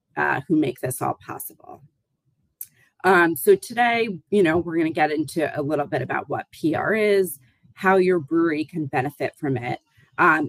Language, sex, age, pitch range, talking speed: English, female, 30-49, 135-175 Hz, 175 wpm